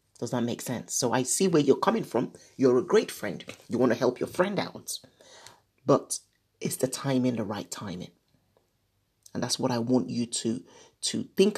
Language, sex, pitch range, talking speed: English, male, 105-155 Hz, 195 wpm